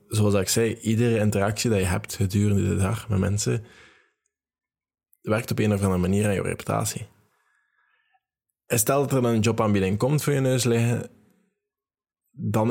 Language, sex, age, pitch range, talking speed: Dutch, male, 20-39, 95-115 Hz, 165 wpm